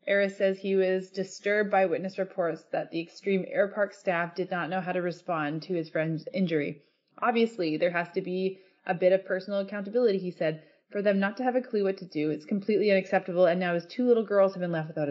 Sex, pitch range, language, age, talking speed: female, 175-205 Hz, English, 20-39, 235 wpm